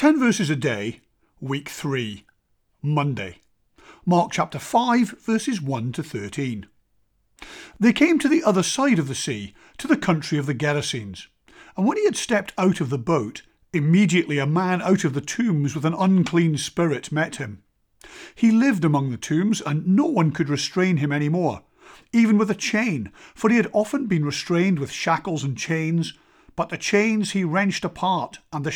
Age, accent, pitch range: 50-69, British, 150-210 Hz